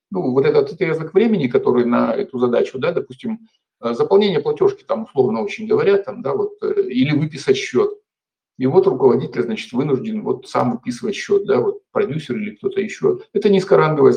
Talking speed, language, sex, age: 180 wpm, Russian, male, 50-69